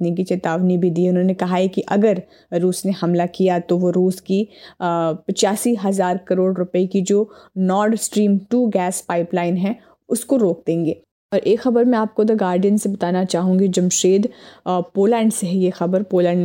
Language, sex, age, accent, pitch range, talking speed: Hindi, female, 20-39, native, 180-210 Hz, 180 wpm